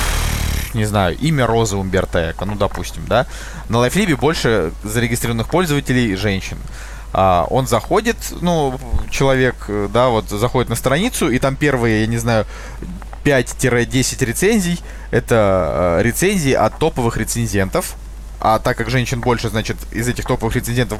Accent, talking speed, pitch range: native, 130 wpm, 110-135 Hz